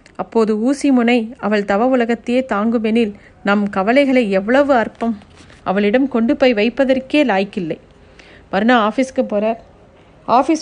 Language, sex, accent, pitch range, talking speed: Tamil, female, native, 225-280 Hz, 120 wpm